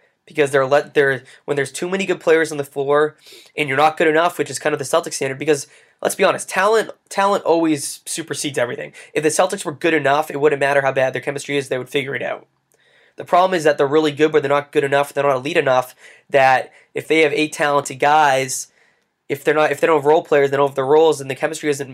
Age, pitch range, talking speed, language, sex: 20-39, 140-155 Hz, 255 wpm, English, male